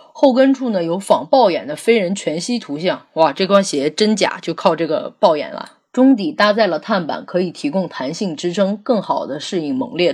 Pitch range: 175-270 Hz